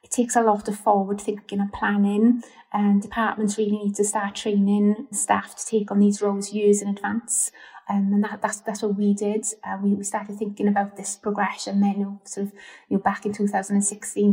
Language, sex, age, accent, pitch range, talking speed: English, female, 30-49, British, 200-215 Hz, 205 wpm